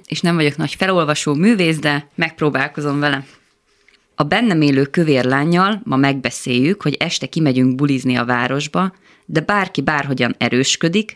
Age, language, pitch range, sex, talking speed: 20-39, Hungarian, 135-175 Hz, female, 135 wpm